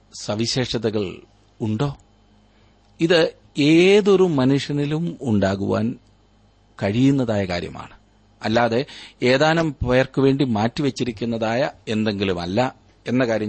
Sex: male